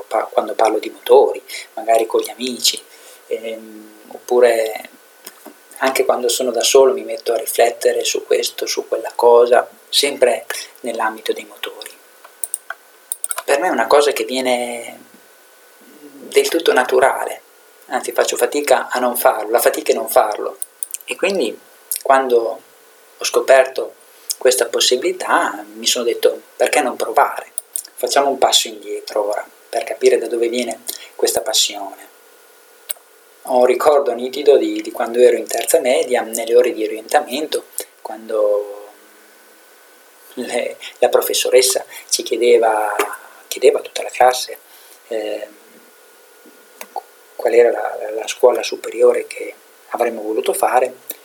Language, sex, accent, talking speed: Italian, male, native, 130 wpm